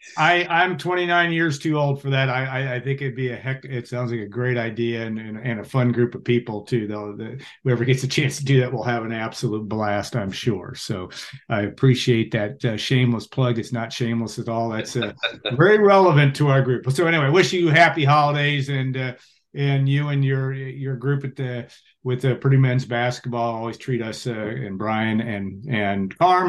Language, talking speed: English, 215 wpm